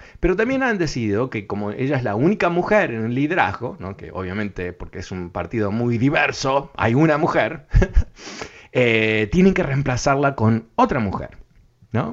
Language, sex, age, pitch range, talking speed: Spanish, male, 30-49, 100-160 Hz, 165 wpm